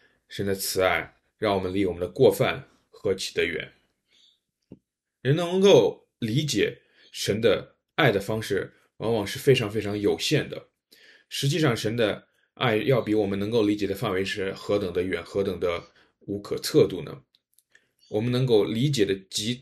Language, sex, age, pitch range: Chinese, male, 20-39, 105-150 Hz